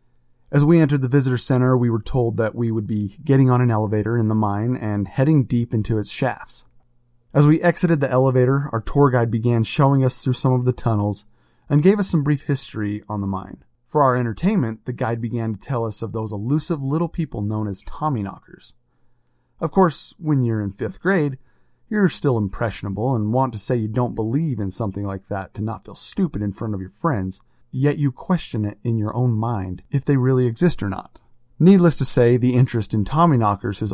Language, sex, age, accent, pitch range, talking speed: English, male, 30-49, American, 110-140 Hz, 215 wpm